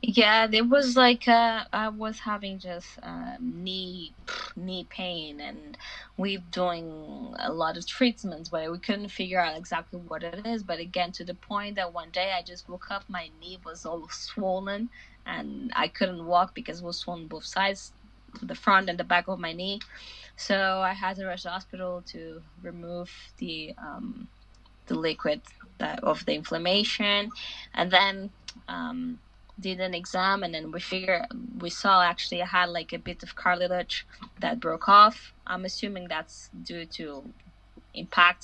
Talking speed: 175 wpm